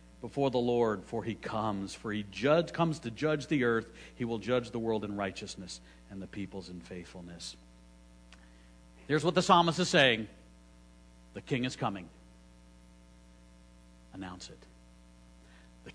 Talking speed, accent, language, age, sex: 145 wpm, American, English, 60-79, male